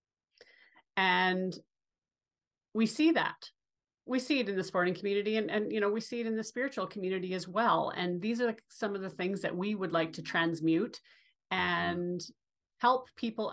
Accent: American